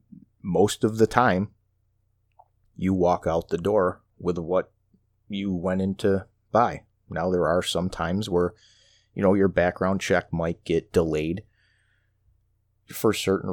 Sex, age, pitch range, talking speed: male, 30-49, 85-100 Hz, 140 wpm